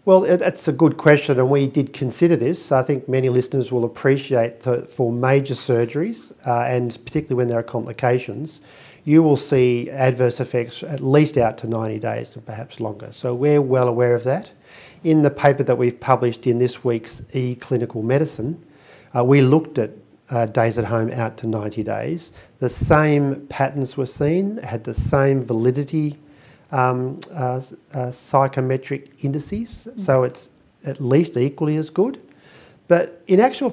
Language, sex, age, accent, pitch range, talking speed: English, male, 50-69, Australian, 120-150 Hz, 165 wpm